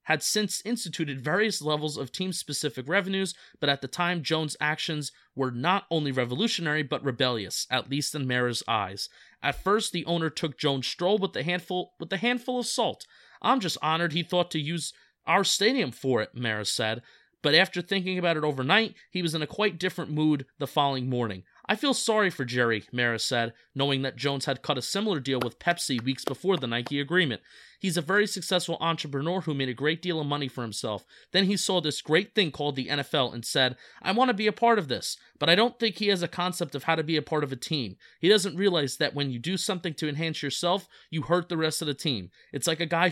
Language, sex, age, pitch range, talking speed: English, male, 30-49, 140-180 Hz, 230 wpm